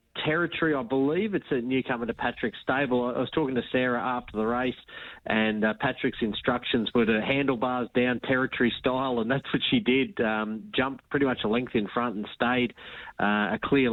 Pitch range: 110-125 Hz